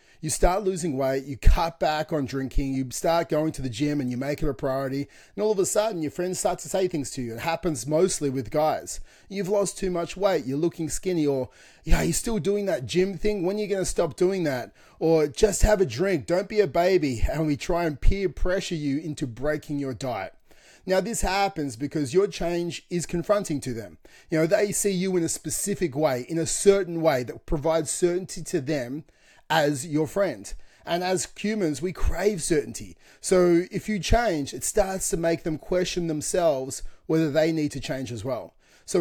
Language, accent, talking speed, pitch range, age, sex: English, Australian, 215 wpm, 145-185 Hz, 30-49, male